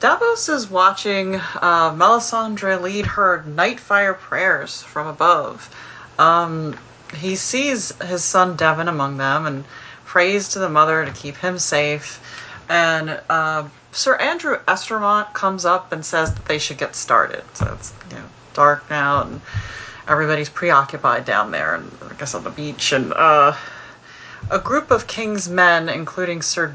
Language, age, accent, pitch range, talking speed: English, 30-49, American, 150-190 Hz, 150 wpm